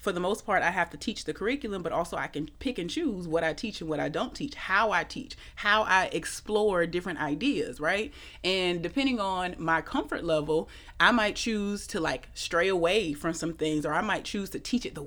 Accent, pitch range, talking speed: American, 160-200 Hz, 230 wpm